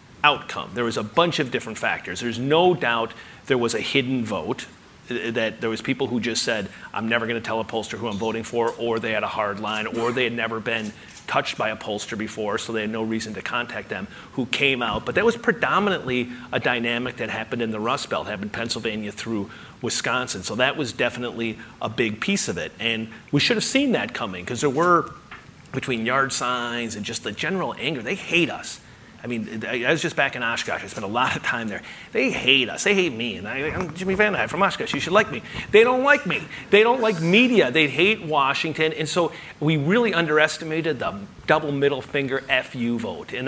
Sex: male